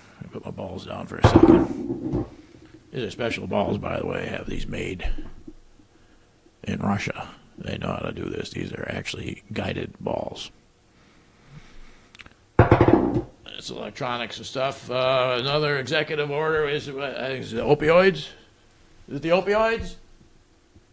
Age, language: 50-69, English